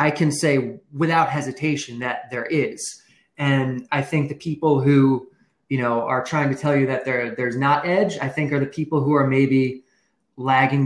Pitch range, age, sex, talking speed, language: 140-170 Hz, 20-39, male, 195 wpm, English